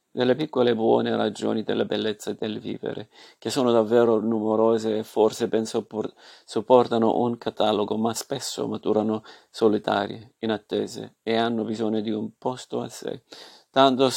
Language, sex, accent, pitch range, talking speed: Italian, male, native, 110-120 Hz, 140 wpm